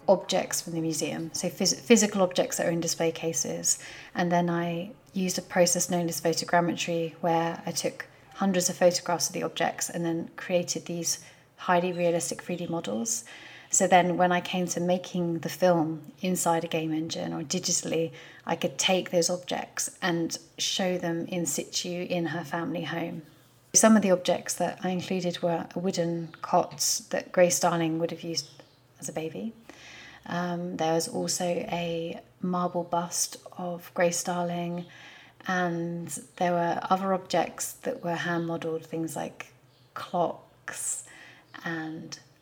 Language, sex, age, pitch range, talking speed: English, female, 30-49, 165-180 Hz, 155 wpm